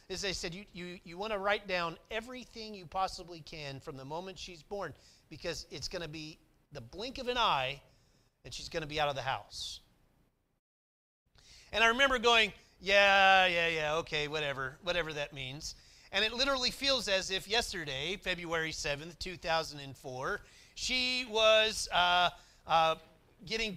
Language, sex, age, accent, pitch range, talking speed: English, male, 30-49, American, 145-200 Hz, 165 wpm